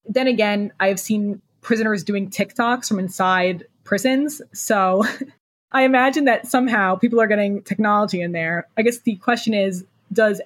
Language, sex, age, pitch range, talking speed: English, female, 20-39, 180-210 Hz, 155 wpm